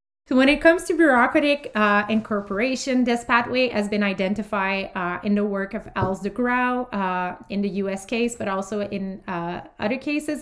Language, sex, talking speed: French, female, 185 wpm